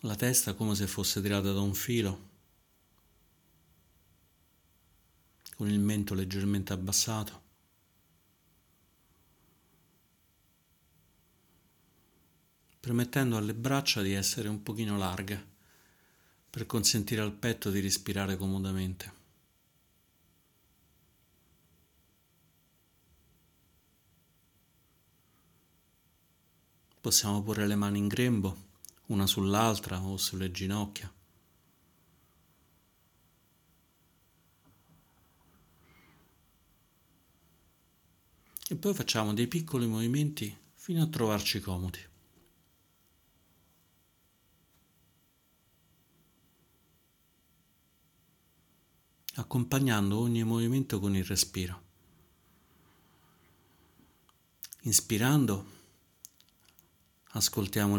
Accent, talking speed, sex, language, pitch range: native, 60 wpm, male, Italian, 90-105 Hz